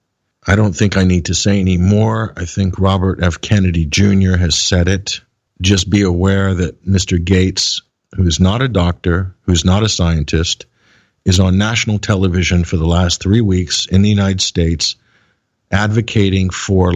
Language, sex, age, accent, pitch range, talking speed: English, male, 50-69, American, 90-110 Hz, 175 wpm